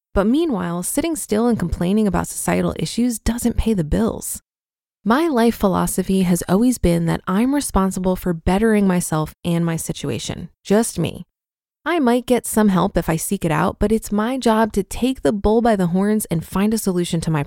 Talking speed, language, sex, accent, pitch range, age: 195 wpm, English, female, American, 170-235 Hz, 20-39